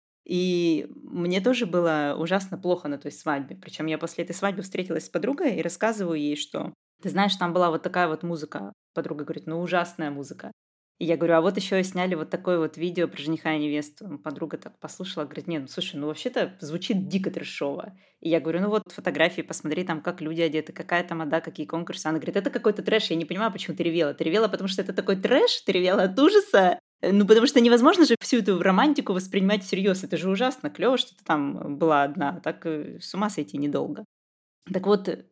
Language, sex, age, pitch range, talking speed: Russian, female, 20-39, 160-205 Hz, 215 wpm